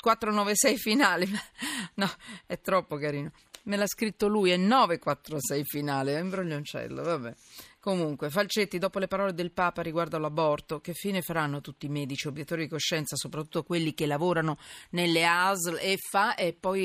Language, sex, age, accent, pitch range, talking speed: Italian, female, 40-59, native, 150-200 Hz, 155 wpm